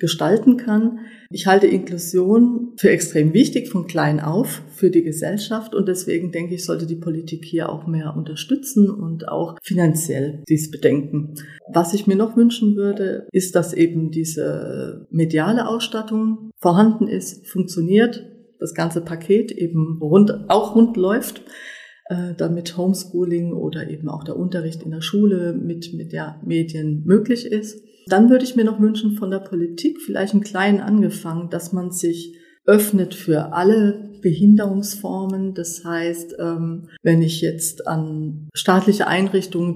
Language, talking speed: German, 150 wpm